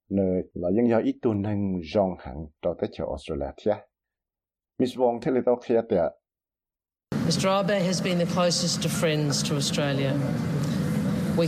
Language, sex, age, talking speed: English, male, 60-79, 145 wpm